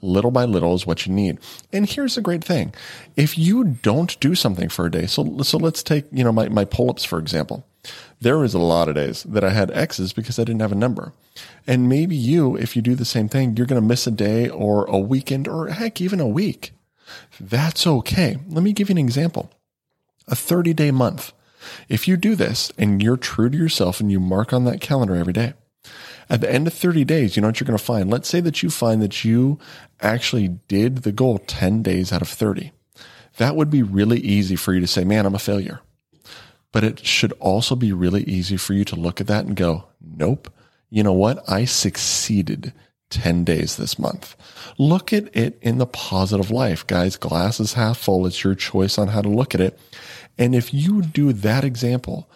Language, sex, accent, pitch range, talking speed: English, male, American, 100-140 Hz, 220 wpm